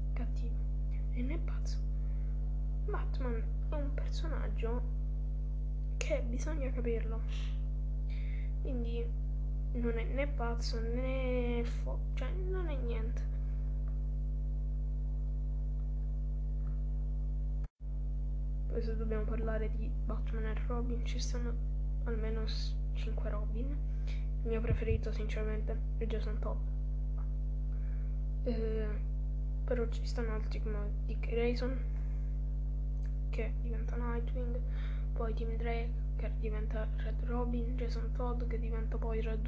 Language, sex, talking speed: Italian, female, 100 wpm